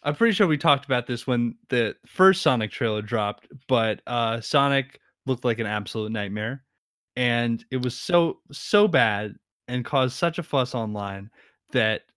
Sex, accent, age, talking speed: male, American, 20-39, 170 wpm